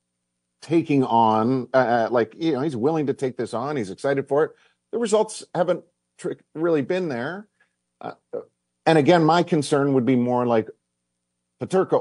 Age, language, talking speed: 50-69, English, 160 wpm